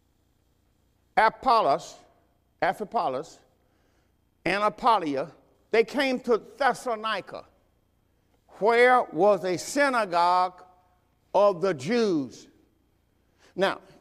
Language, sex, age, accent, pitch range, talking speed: English, male, 50-69, American, 165-235 Hz, 70 wpm